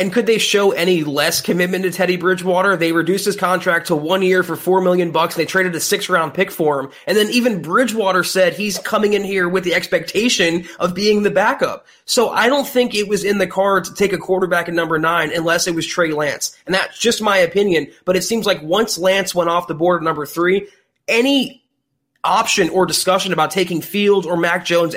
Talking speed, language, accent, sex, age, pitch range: 225 wpm, English, American, male, 20-39, 170-205 Hz